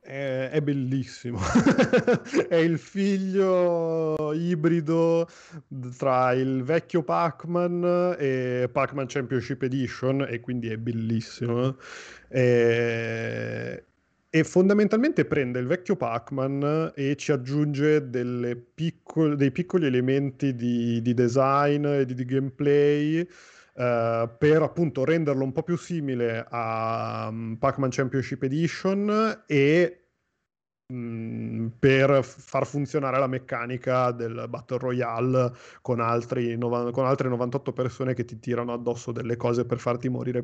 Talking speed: 105 wpm